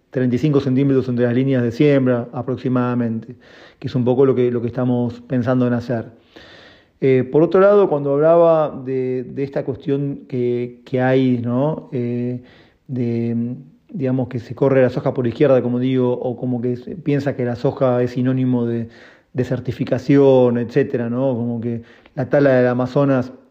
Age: 30-49